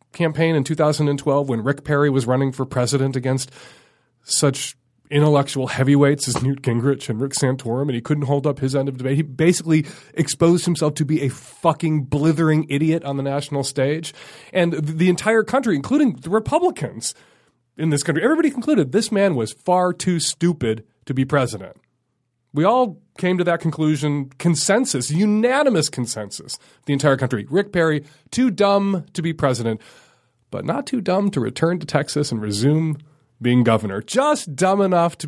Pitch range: 130-170 Hz